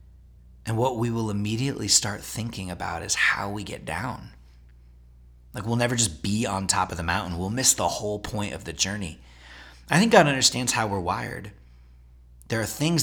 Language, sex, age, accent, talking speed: English, male, 30-49, American, 190 wpm